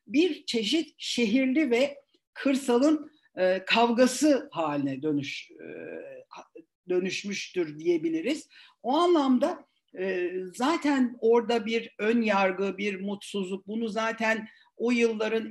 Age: 50-69